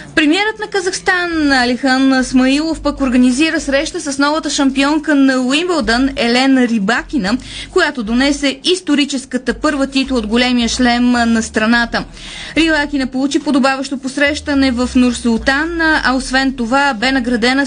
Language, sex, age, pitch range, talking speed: Bulgarian, female, 20-39, 235-280 Hz, 120 wpm